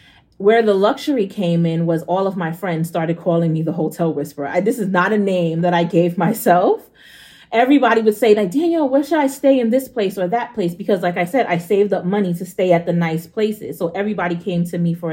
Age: 30-49